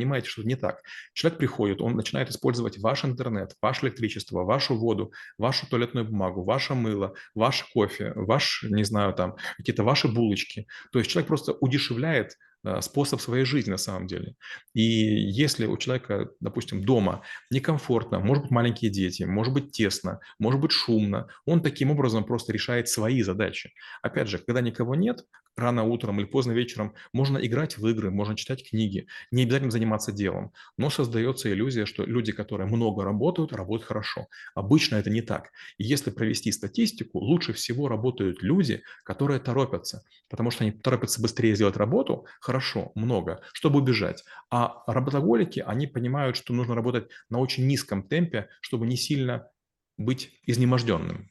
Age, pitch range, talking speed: 30-49, 105-130 Hz, 155 wpm